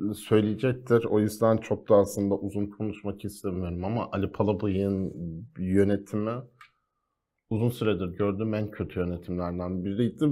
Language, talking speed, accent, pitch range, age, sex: Turkish, 115 wpm, native, 90-110 Hz, 50-69, male